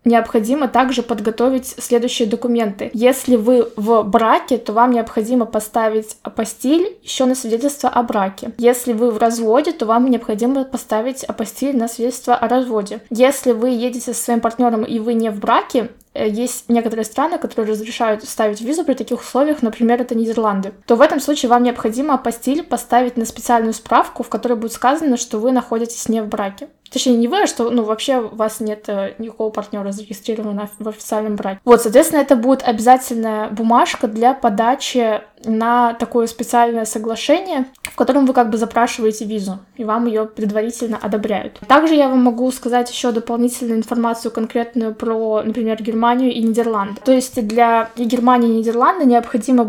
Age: 20-39